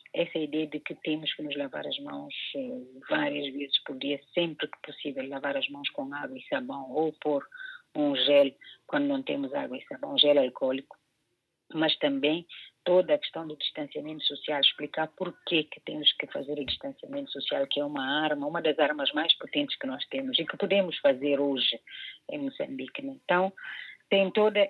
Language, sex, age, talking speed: Portuguese, female, 30-49, 185 wpm